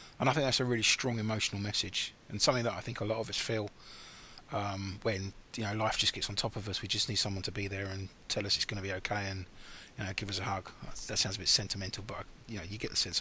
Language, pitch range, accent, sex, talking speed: English, 100-130 Hz, British, male, 290 wpm